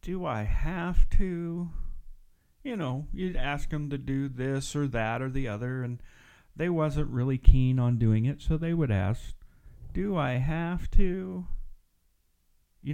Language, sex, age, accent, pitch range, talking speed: English, male, 40-59, American, 100-135 Hz, 160 wpm